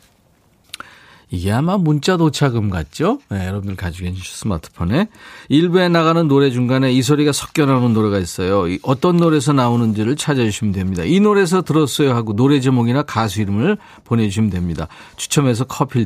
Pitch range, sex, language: 110-165 Hz, male, Korean